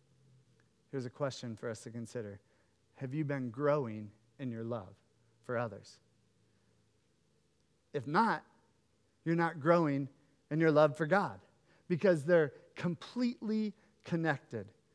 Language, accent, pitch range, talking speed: English, American, 120-175 Hz, 120 wpm